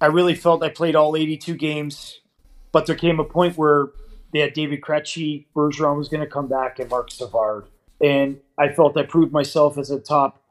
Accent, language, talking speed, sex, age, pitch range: American, English, 205 wpm, male, 30-49, 135-160 Hz